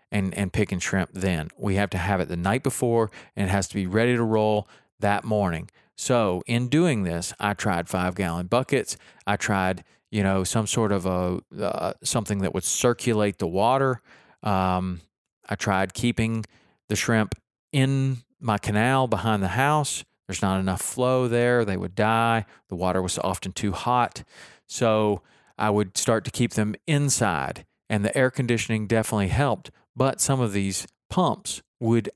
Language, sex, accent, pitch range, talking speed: English, male, American, 95-120 Hz, 170 wpm